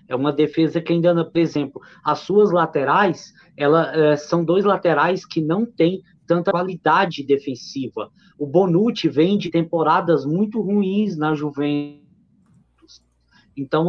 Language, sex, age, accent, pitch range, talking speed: Portuguese, male, 20-39, Brazilian, 145-190 Hz, 125 wpm